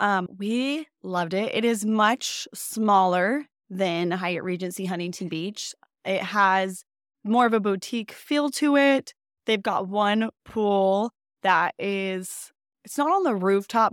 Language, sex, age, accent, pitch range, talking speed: English, female, 20-39, American, 185-225 Hz, 140 wpm